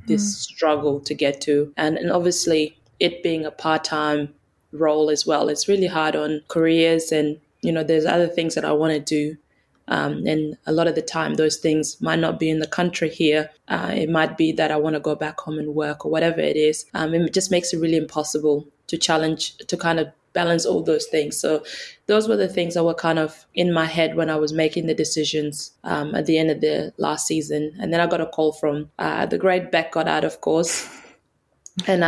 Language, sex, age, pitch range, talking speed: English, female, 20-39, 155-170 Hz, 230 wpm